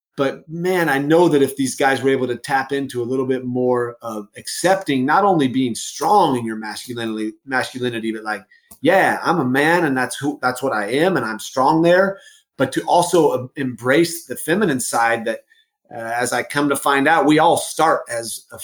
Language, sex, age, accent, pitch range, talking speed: English, male, 30-49, American, 115-145 Hz, 205 wpm